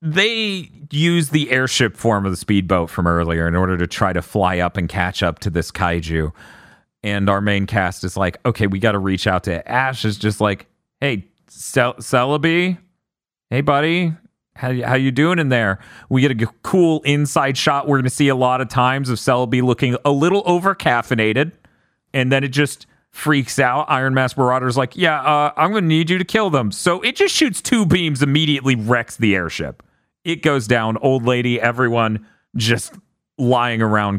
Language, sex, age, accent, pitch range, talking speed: English, male, 40-59, American, 105-155 Hz, 195 wpm